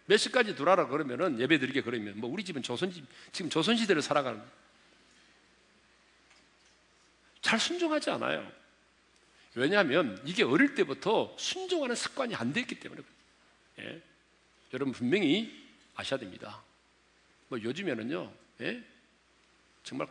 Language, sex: Korean, male